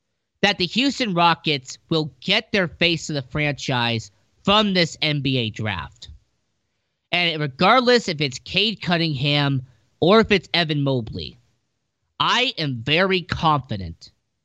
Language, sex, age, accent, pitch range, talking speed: English, male, 40-59, American, 125-175 Hz, 125 wpm